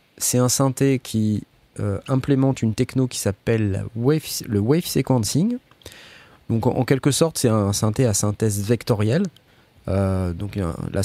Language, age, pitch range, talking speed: French, 30-49, 100-130 Hz, 150 wpm